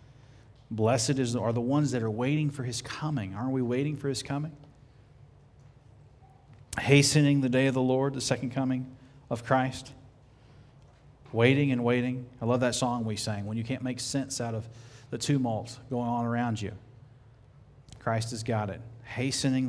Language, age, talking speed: English, 40-59, 165 wpm